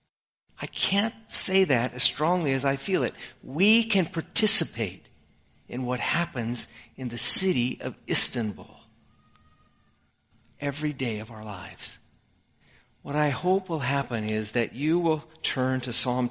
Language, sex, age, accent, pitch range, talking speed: English, male, 50-69, American, 110-140 Hz, 140 wpm